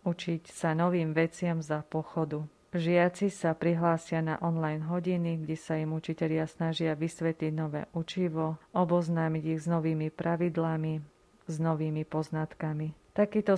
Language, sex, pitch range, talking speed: Slovak, female, 165-175 Hz, 130 wpm